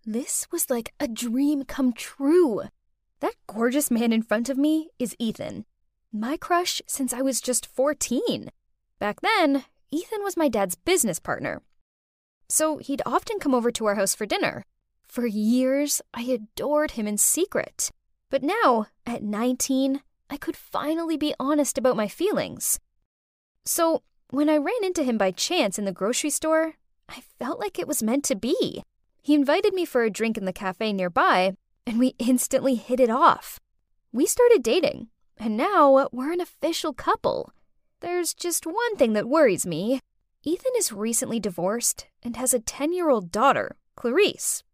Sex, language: female, English